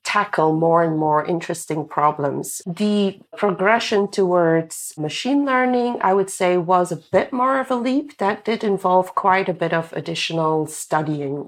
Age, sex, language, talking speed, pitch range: 40-59, female, English, 155 wpm, 160-200 Hz